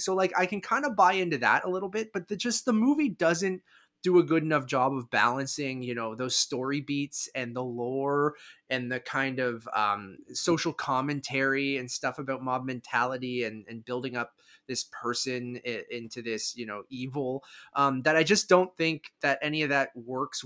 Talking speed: 195 wpm